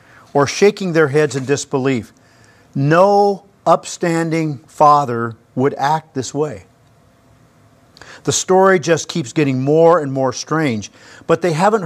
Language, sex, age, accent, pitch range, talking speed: English, male, 50-69, American, 130-170 Hz, 125 wpm